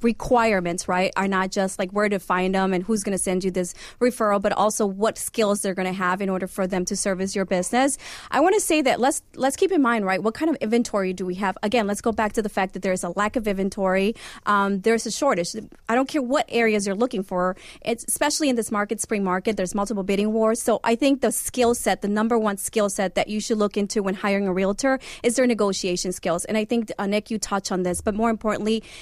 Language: English